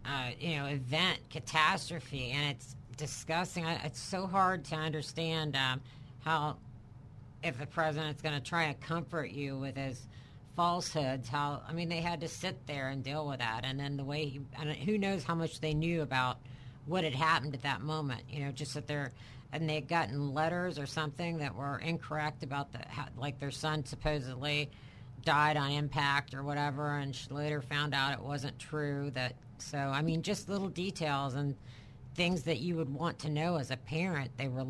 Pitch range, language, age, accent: 135-165 Hz, English, 50-69, American